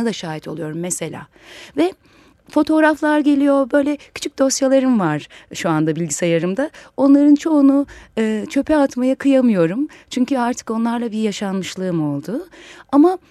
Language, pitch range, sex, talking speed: Turkish, 195-280 Hz, female, 120 wpm